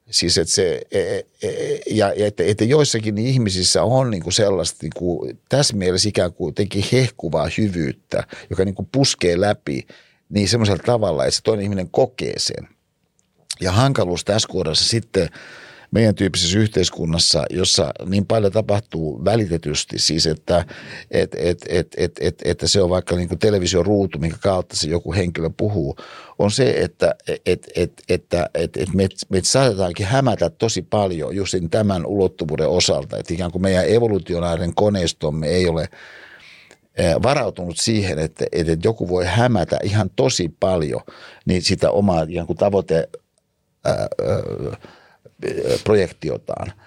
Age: 60-79